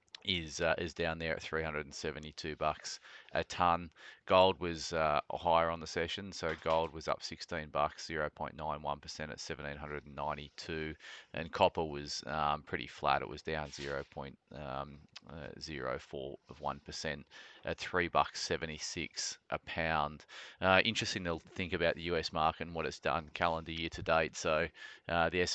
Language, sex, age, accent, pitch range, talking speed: English, male, 30-49, Australian, 75-85 Hz, 195 wpm